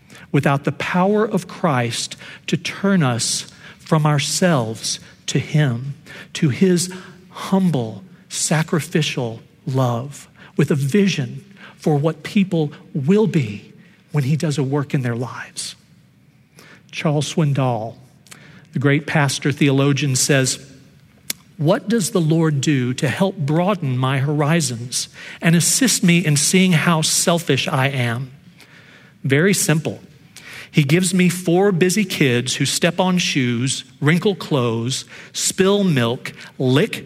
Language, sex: English, male